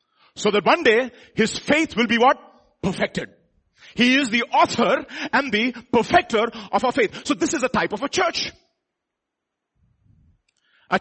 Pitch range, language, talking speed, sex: 170-275 Hz, English, 160 wpm, male